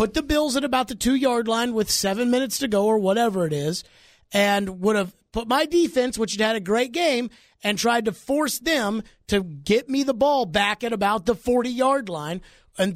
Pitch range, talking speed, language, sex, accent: 180-245 Hz, 210 wpm, English, male, American